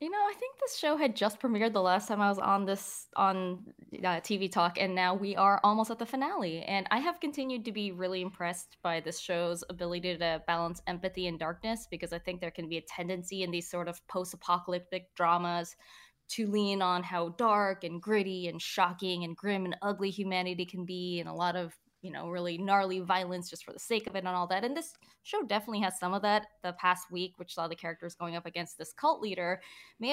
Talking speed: 230 wpm